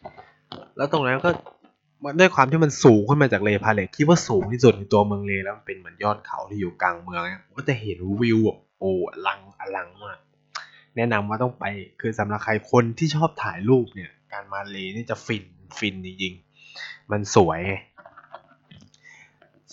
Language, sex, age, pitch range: Thai, male, 20-39, 105-135 Hz